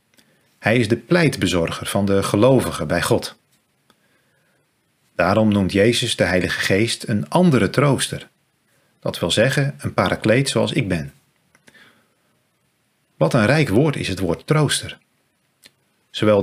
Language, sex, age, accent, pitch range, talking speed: Dutch, male, 40-59, Dutch, 90-135 Hz, 130 wpm